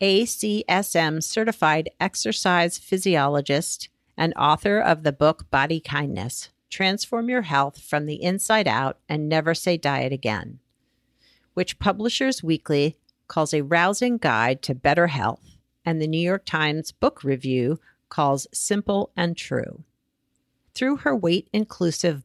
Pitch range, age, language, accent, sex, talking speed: 145-190 Hz, 50-69, English, American, female, 125 wpm